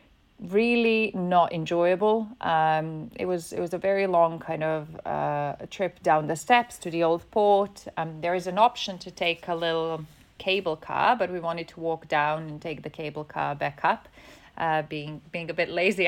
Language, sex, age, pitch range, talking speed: Greek, female, 30-49, 155-195 Hz, 195 wpm